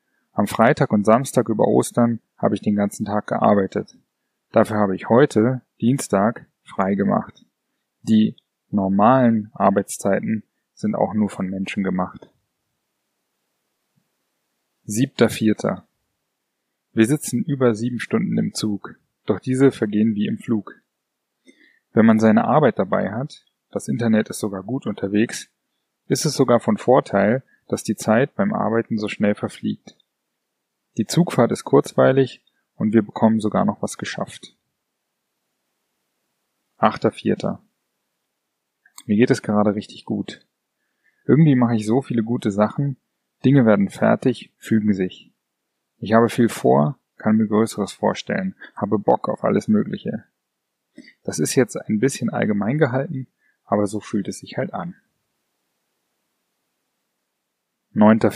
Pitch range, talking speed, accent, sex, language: 105-130 Hz, 130 wpm, German, male, German